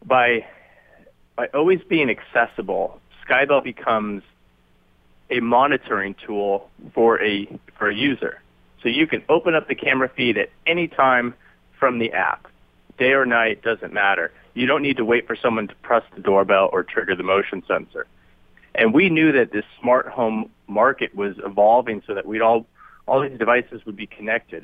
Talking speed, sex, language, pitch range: 170 wpm, male, English, 100-130 Hz